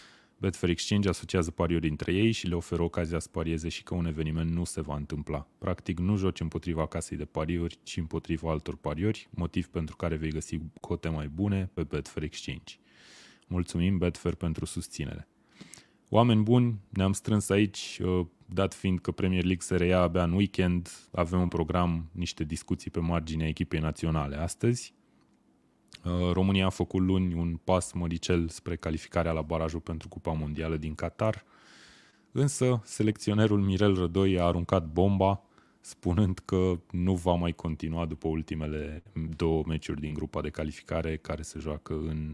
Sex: male